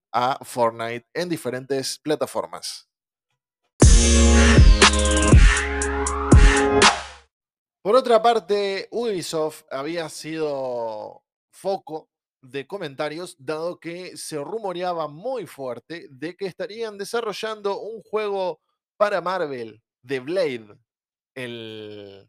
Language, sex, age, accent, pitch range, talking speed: Spanish, male, 20-39, Argentinian, 130-180 Hz, 80 wpm